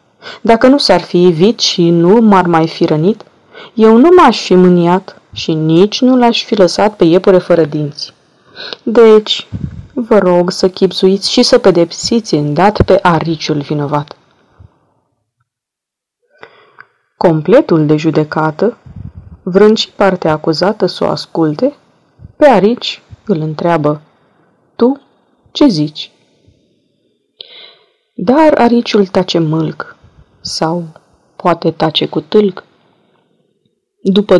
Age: 30-49